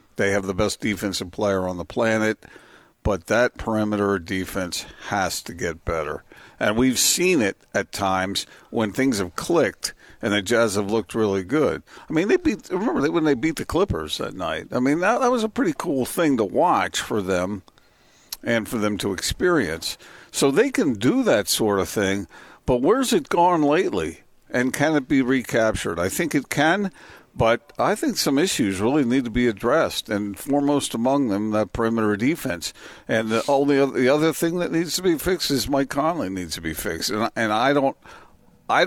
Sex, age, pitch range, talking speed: male, 50-69, 100-145 Hz, 200 wpm